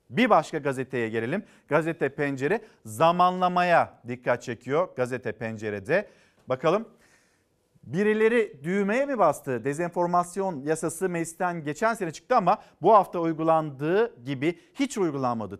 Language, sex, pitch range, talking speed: Turkish, male, 150-190 Hz, 110 wpm